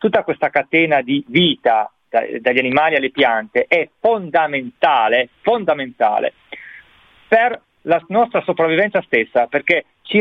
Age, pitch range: 40-59, 130-170 Hz